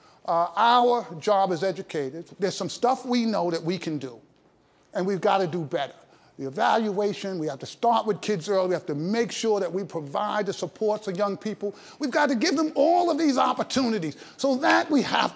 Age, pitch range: 50-69, 170-245 Hz